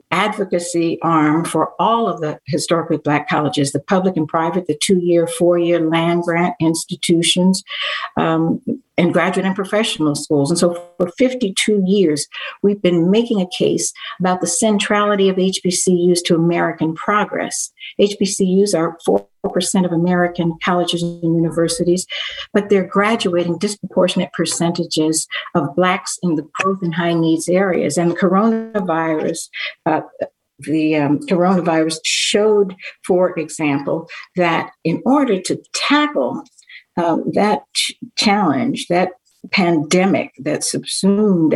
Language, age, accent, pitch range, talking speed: English, 60-79, American, 160-200 Hz, 120 wpm